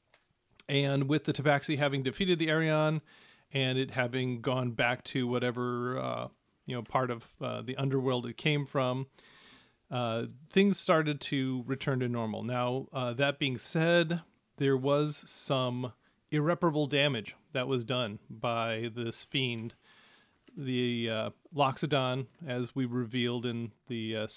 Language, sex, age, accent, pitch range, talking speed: English, male, 40-59, American, 120-145 Hz, 145 wpm